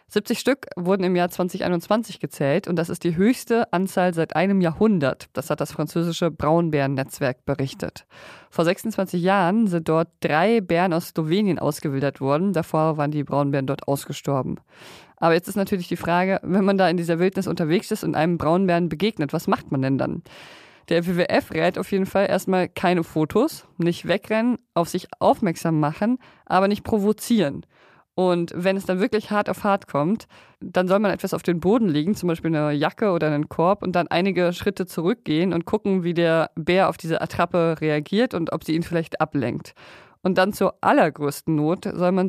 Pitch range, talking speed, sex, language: 160-195 Hz, 185 wpm, female, German